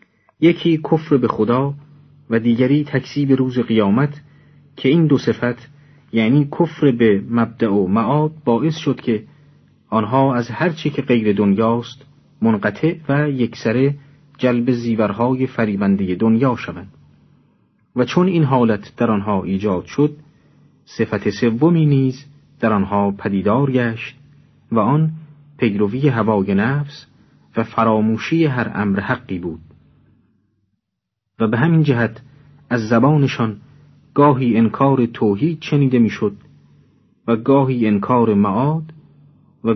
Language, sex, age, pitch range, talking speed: Persian, male, 40-59, 110-145 Hz, 120 wpm